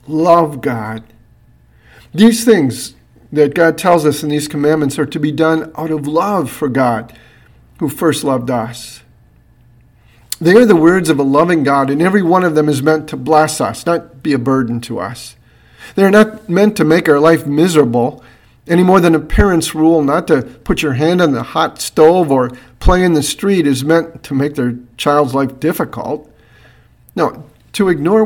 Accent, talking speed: American, 185 wpm